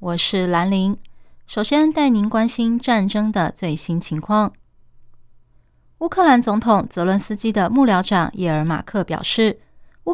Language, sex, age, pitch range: Chinese, female, 20-39, 170-225 Hz